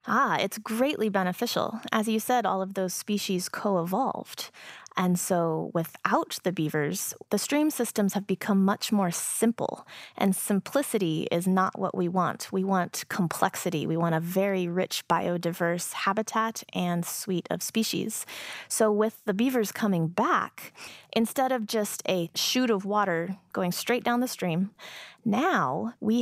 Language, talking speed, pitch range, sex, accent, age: English, 150 wpm, 180-225 Hz, female, American, 20-39